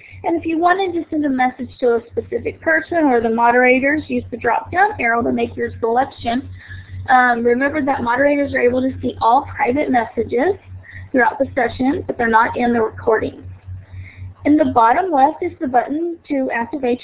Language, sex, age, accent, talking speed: English, female, 30-49, American, 185 wpm